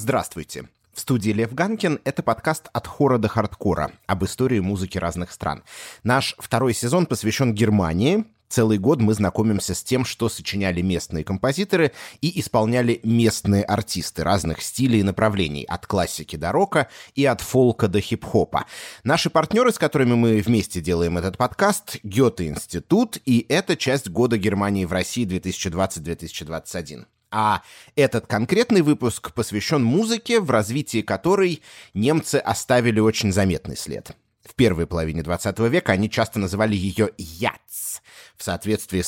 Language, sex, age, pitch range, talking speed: Russian, male, 30-49, 95-130 Hz, 140 wpm